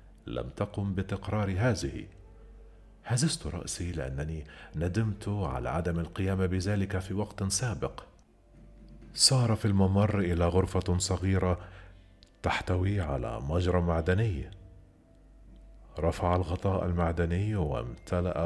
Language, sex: Arabic, male